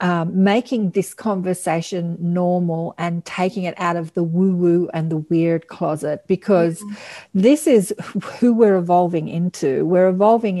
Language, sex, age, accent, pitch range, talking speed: English, female, 50-69, Australian, 175-205 Hz, 140 wpm